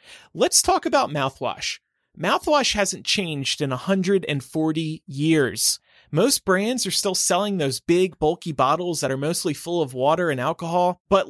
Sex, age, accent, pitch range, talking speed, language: male, 30-49, American, 140-195 Hz, 150 wpm, English